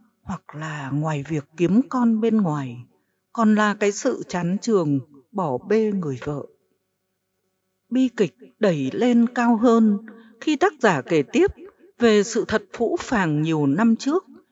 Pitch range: 175-250 Hz